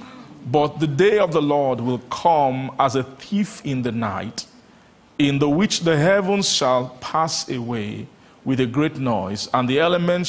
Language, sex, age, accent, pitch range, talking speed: English, male, 40-59, Nigerian, 120-155 Hz, 170 wpm